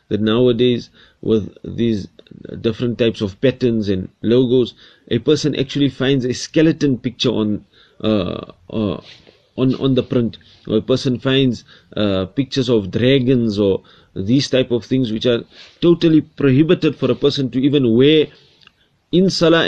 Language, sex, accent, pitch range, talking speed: English, male, Indian, 105-125 Hz, 150 wpm